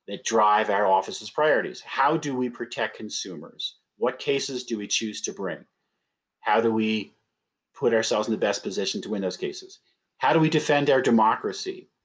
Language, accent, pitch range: English, American, 105-155 Hz